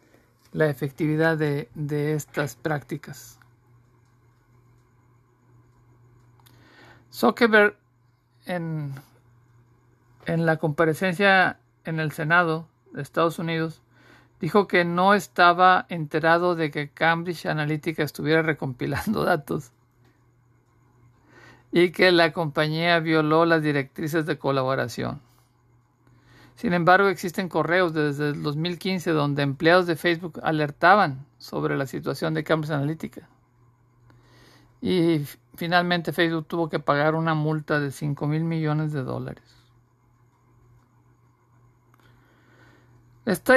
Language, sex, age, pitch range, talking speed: Spanish, male, 50-69, 120-170 Hz, 100 wpm